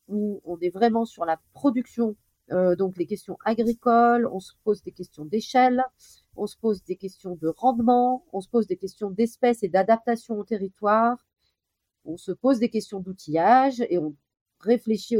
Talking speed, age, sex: 175 wpm, 40-59, female